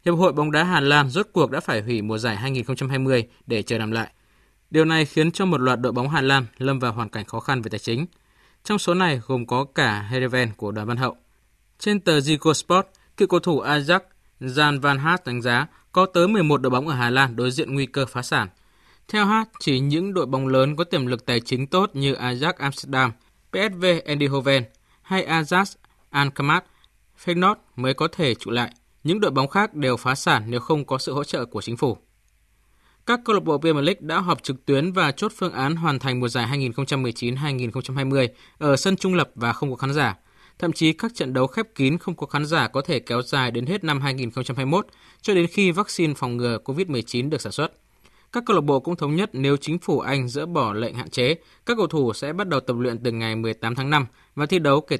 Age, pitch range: 20-39, 120-165 Hz